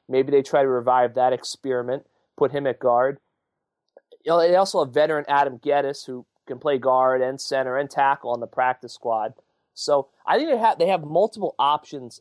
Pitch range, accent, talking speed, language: 125-150 Hz, American, 195 wpm, English